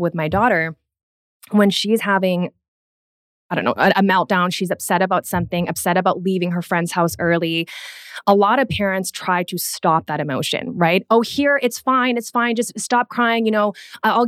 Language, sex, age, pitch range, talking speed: English, female, 20-39, 170-210 Hz, 190 wpm